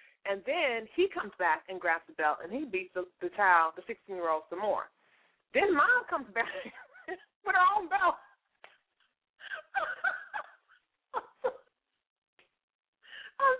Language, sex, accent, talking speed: English, female, American, 125 wpm